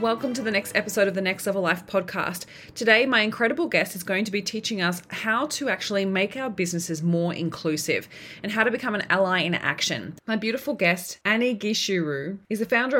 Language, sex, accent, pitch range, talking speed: English, female, Australian, 160-200 Hz, 210 wpm